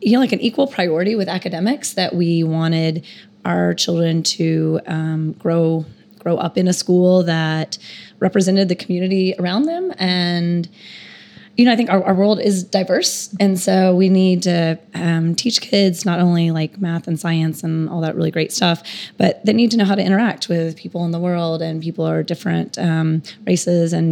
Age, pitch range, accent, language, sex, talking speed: 20-39, 165-195 Hz, American, English, female, 190 wpm